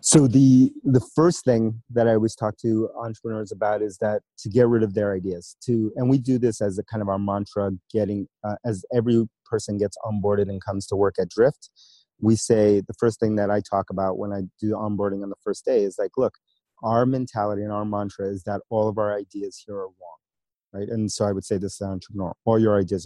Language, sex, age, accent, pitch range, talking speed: English, male, 30-49, American, 100-120 Hz, 235 wpm